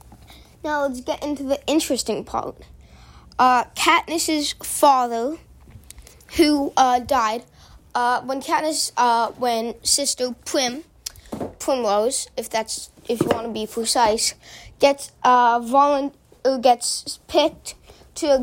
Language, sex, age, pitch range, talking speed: English, female, 20-39, 235-285 Hz, 115 wpm